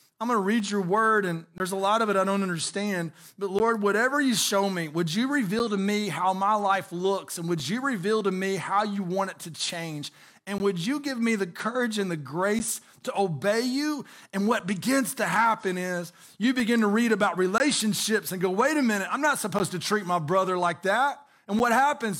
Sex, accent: male, American